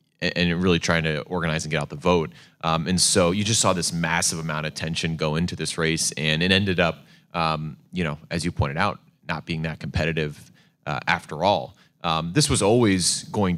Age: 30-49